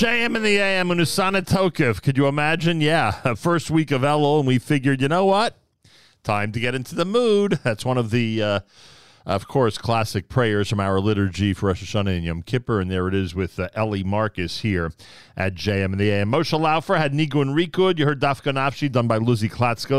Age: 40-59